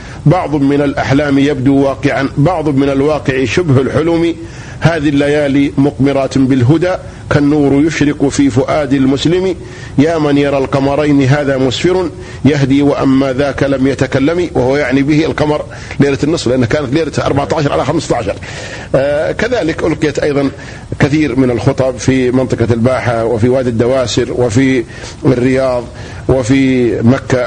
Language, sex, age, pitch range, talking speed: Arabic, male, 50-69, 125-145 Hz, 130 wpm